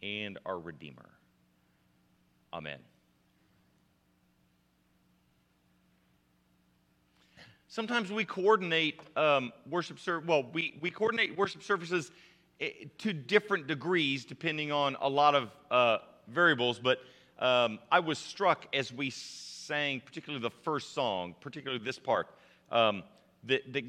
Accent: American